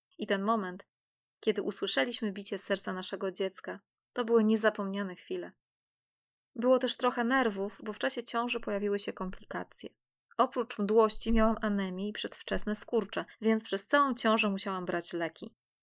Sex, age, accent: female, 20-39, native